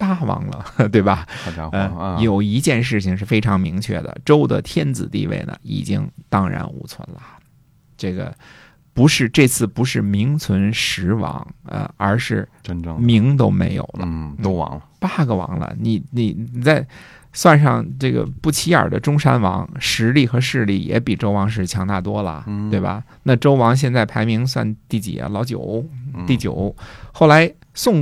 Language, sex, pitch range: Chinese, male, 100-135 Hz